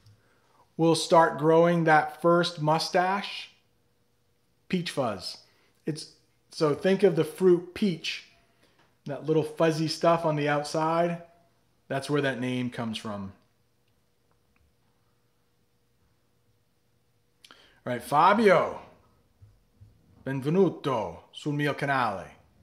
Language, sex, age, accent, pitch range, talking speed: English, male, 30-49, American, 125-175 Hz, 90 wpm